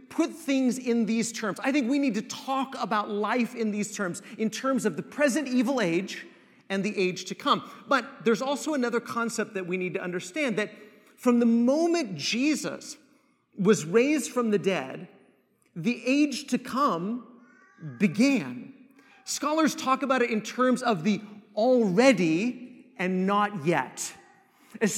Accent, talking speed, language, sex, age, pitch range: American, 160 wpm, English, male, 40-59, 220-290 Hz